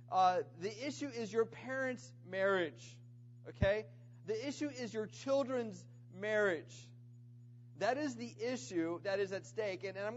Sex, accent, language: male, American, English